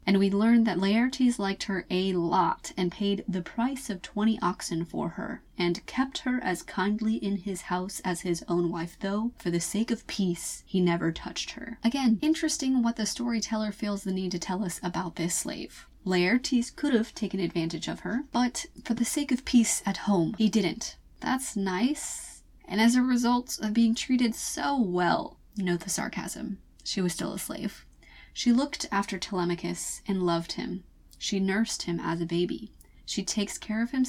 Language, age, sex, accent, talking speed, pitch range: English, 20-39, female, American, 190 wpm, 180-230 Hz